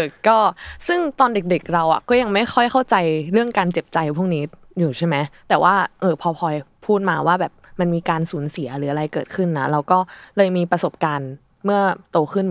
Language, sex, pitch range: Thai, female, 155-200 Hz